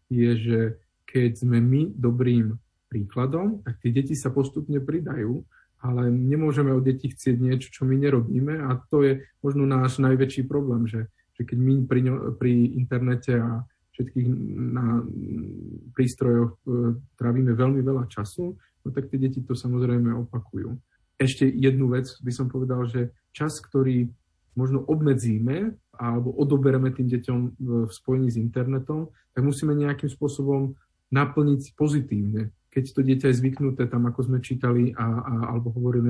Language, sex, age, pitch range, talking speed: Slovak, male, 40-59, 120-135 Hz, 150 wpm